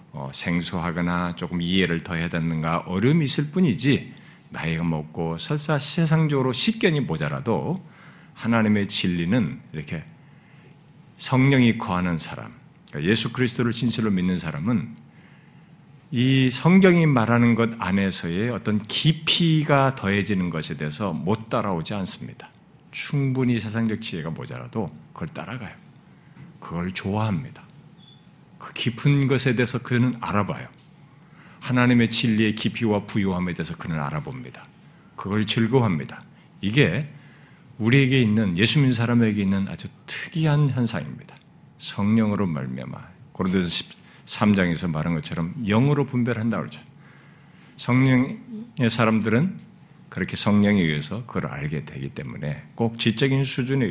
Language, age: Korean, 50-69